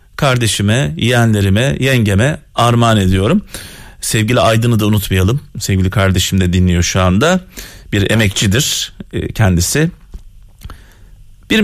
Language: Turkish